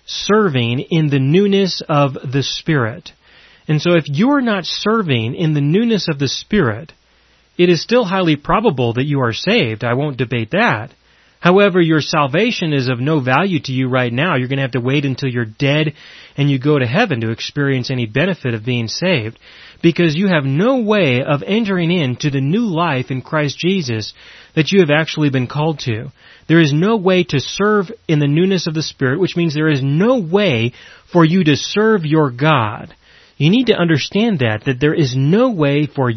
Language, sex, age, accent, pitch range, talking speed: English, male, 30-49, American, 130-180 Hz, 200 wpm